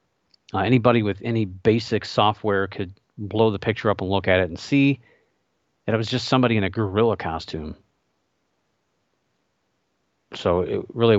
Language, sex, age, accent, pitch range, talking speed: English, male, 40-59, American, 95-120 Hz, 155 wpm